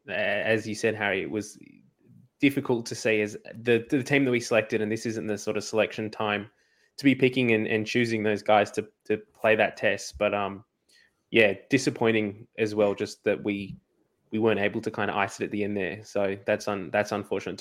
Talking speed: 215 wpm